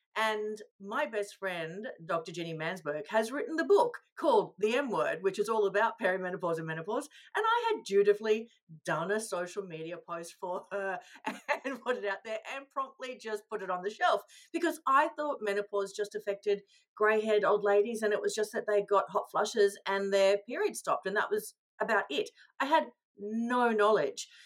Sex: female